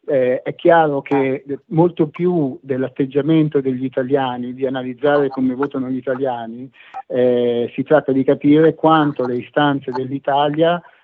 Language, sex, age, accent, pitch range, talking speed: Italian, male, 50-69, native, 130-150 Hz, 130 wpm